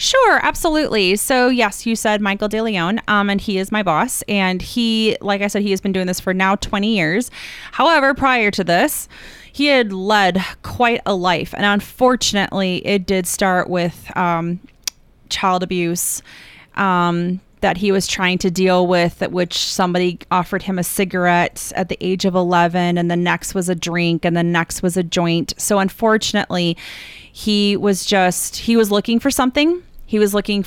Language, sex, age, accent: English, female, 30-49, American